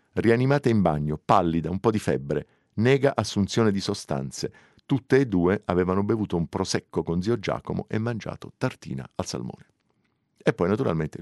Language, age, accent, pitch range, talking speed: Italian, 50-69, native, 85-120 Hz, 160 wpm